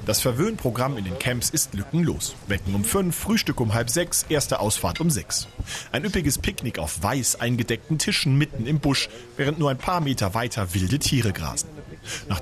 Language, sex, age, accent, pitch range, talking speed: German, male, 40-59, German, 105-140 Hz, 185 wpm